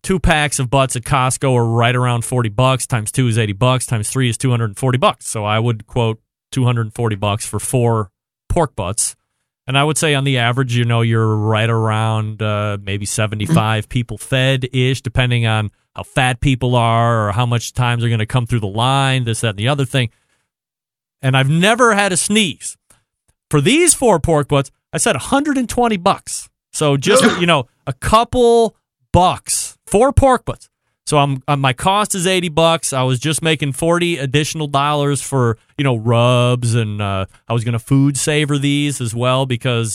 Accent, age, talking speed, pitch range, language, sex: American, 30-49, 190 wpm, 115-165 Hz, English, male